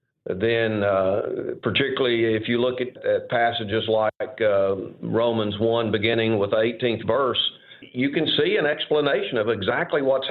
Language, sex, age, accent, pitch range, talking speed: English, male, 50-69, American, 110-135 Hz, 145 wpm